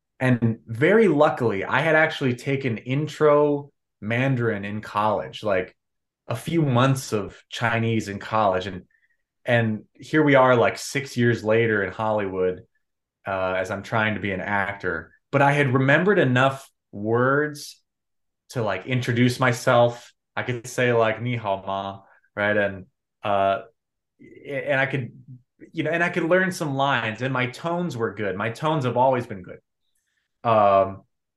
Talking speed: 155 wpm